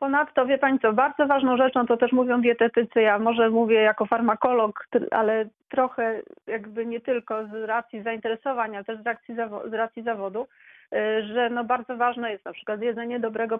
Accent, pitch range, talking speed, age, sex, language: native, 205-240 Hz, 175 wpm, 40-59, female, Polish